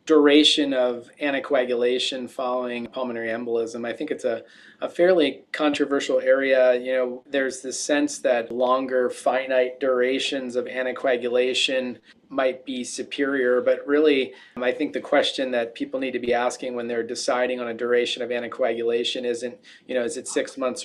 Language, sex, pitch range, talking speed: English, male, 125-150 Hz, 160 wpm